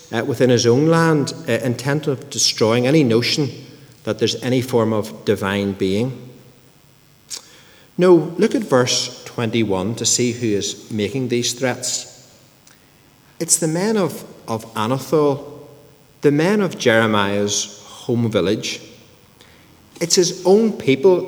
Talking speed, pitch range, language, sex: 125 wpm, 115-155 Hz, English, male